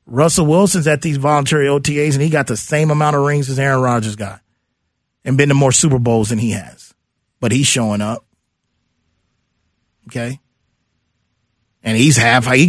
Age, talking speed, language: 30-49, 165 wpm, English